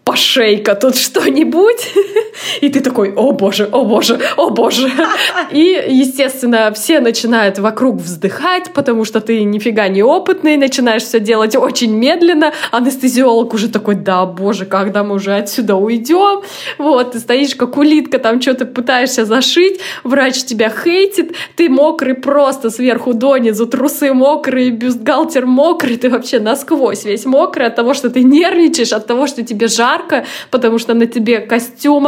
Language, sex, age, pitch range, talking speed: Russian, female, 20-39, 210-275 Hz, 150 wpm